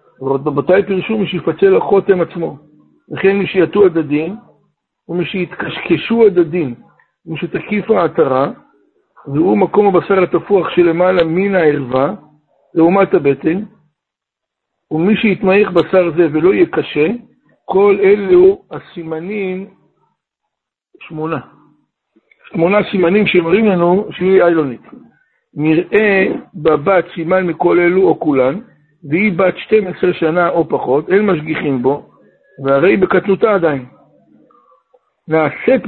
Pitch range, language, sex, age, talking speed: 160-195 Hz, Hebrew, male, 60-79, 105 wpm